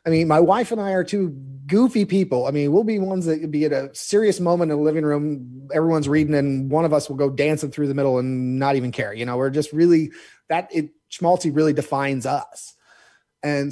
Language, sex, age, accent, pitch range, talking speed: English, male, 30-49, American, 135-185 Hz, 230 wpm